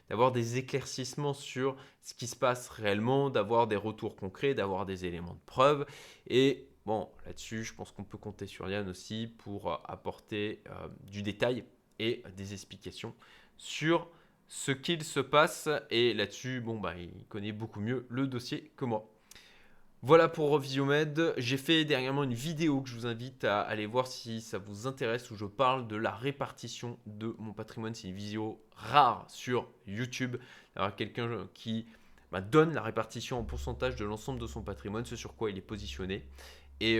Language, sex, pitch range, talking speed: French, male, 105-130 Hz, 175 wpm